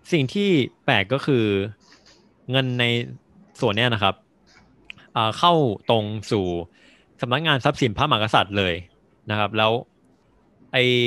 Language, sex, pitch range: Thai, male, 100-125 Hz